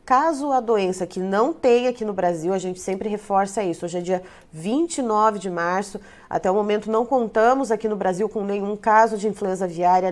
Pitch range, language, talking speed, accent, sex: 185-230 Hz, Portuguese, 200 wpm, Brazilian, female